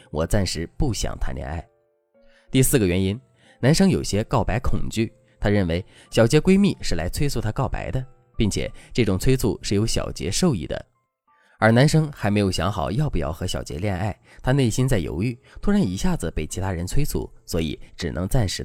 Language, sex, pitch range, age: Chinese, male, 90-130 Hz, 20-39